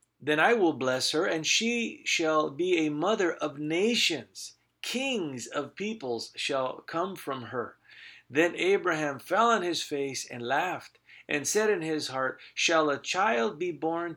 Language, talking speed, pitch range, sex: English, 160 wpm, 120-165 Hz, male